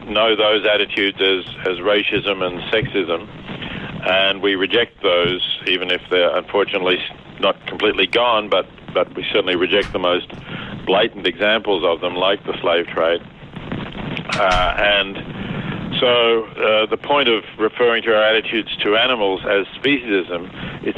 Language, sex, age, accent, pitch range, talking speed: English, male, 50-69, Australian, 95-105 Hz, 145 wpm